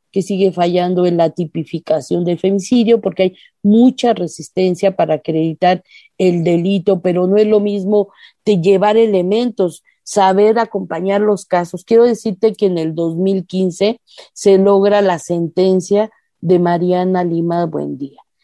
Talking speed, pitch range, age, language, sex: 135 wpm, 175-200 Hz, 40-59, Spanish, female